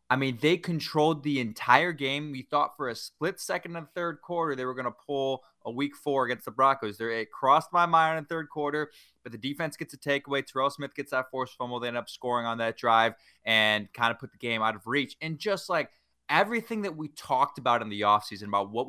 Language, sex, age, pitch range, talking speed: English, male, 20-39, 115-160 Hz, 245 wpm